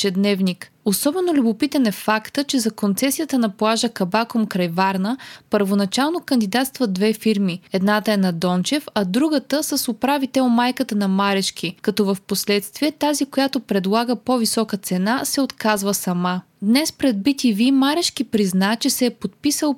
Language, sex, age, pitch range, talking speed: Bulgarian, female, 20-39, 200-265 Hz, 145 wpm